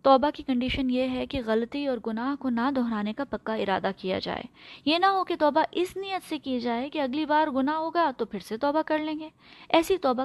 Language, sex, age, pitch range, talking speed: Urdu, female, 20-39, 245-305 Hz, 240 wpm